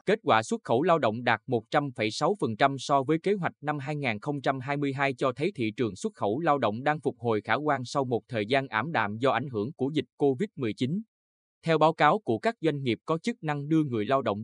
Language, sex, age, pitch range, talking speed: Vietnamese, male, 20-39, 110-150 Hz, 220 wpm